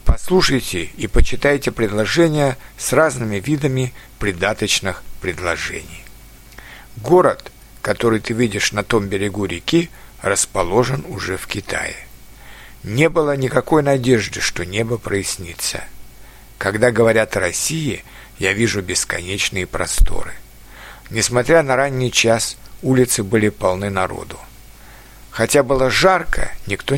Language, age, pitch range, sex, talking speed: Russian, 60-79, 100-135 Hz, male, 105 wpm